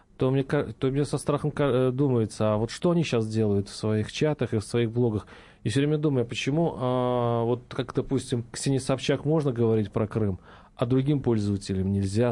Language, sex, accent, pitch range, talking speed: Russian, male, native, 125-165 Hz, 185 wpm